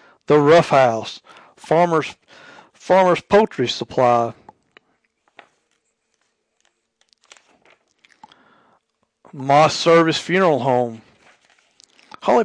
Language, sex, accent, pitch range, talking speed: English, male, American, 140-185 Hz, 60 wpm